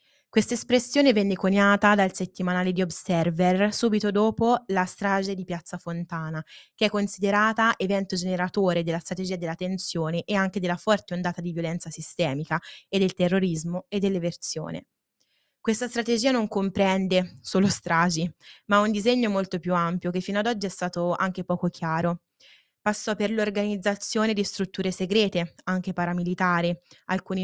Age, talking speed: 20-39, 150 wpm